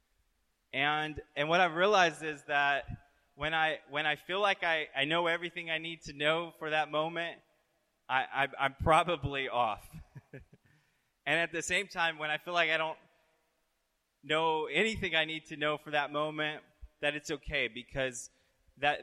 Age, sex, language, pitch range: 20-39, male, English, 130-160 Hz